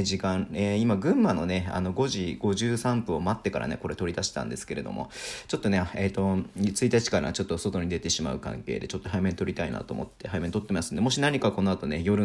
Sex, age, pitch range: male, 40-59, 90-120 Hz